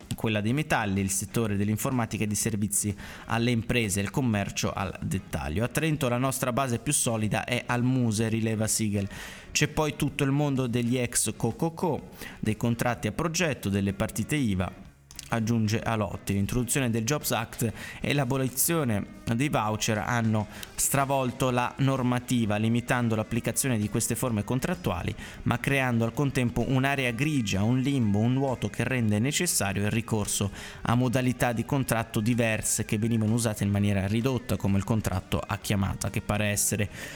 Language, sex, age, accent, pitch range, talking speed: Italian, male, 20-39, native, 105-130 Hz, 155 wpm